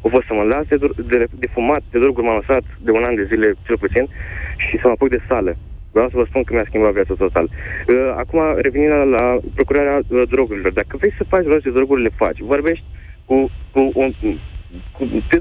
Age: 20-39